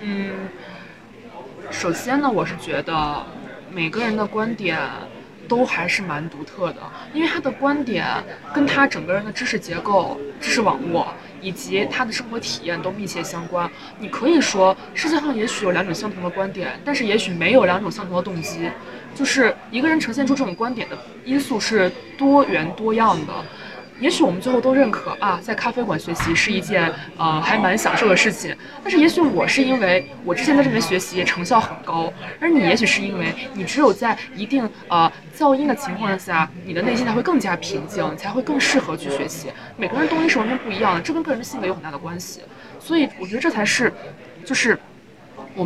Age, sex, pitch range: 20-39, female, 175-265 Hz